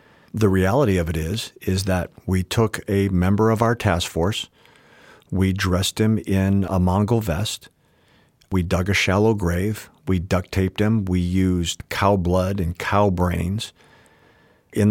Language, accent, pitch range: English, American, 90-105 Hz